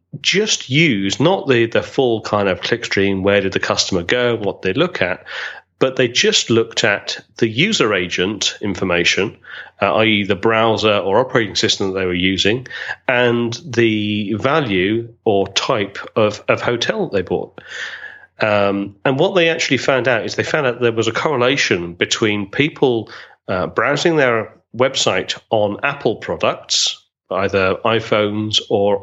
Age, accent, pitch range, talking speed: 40-59, British, 105-125 Hz, 155 wpm